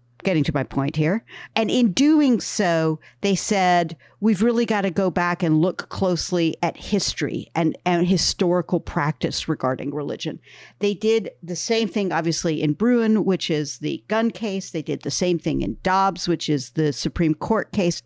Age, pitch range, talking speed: 50-69, 160-195 Hz, 180 wpm